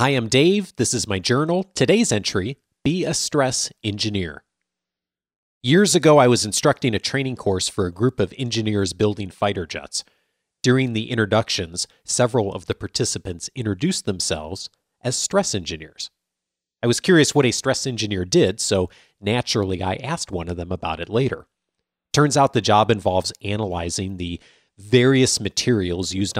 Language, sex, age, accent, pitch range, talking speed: English, male, 40-59, American, 95-135 Hz, 155 wpm